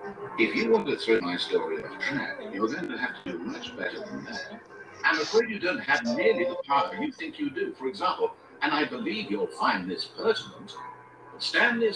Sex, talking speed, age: male, 205 wpm, 60-79